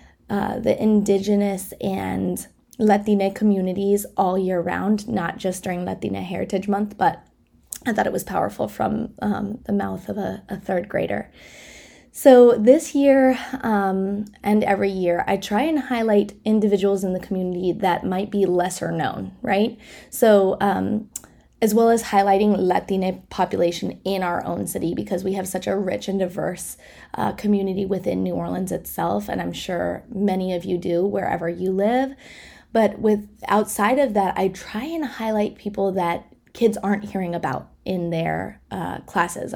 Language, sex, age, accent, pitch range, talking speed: English, female, 20-39, American, 185-215 Hz, 160 wpm